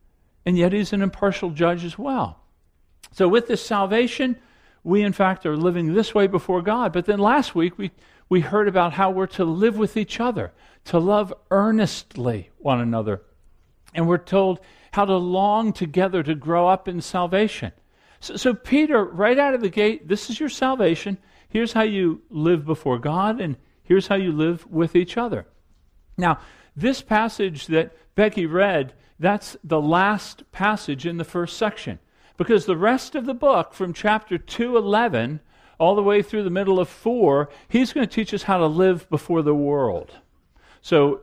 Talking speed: 180 wpm